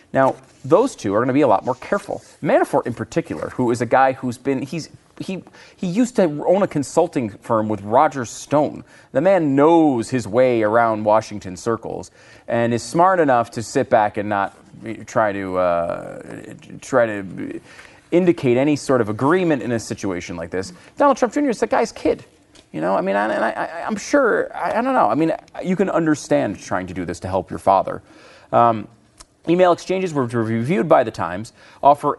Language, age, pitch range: English, 30-49, 110-165 Hz